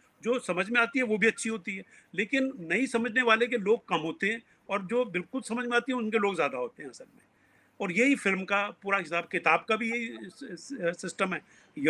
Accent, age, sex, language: native, 50-69, male, Hindi